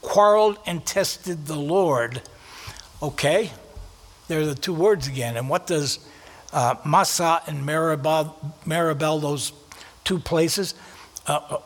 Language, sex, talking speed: English, male, 120 wpm